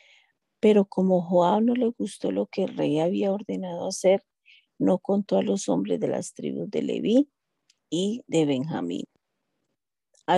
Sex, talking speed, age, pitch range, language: female, 155 wpm, 40-59, 165-215 Hz, Spanish